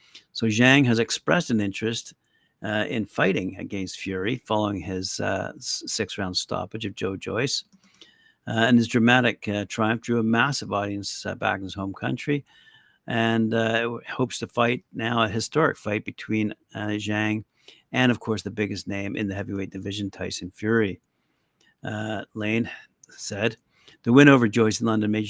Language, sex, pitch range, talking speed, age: English, male, 105-120 Hz, 165 wpm, 50-69